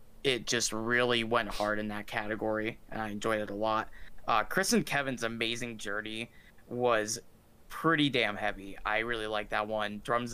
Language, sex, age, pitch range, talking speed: English, male, 20-39, 105-120 Hz, 175 wpm